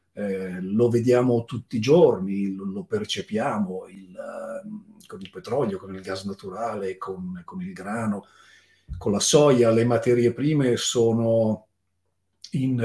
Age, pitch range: 40-59, 95-130 Hz